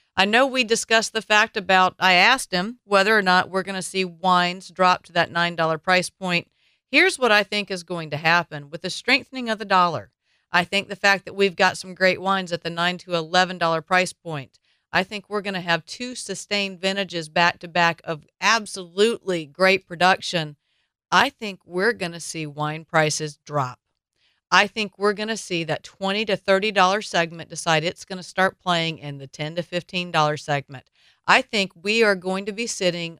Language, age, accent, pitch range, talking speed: English, 50-69, American, 170-210 Hz, 200 wpm